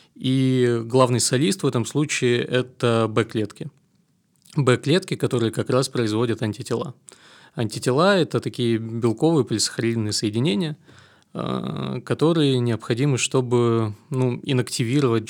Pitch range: 115-135 Hz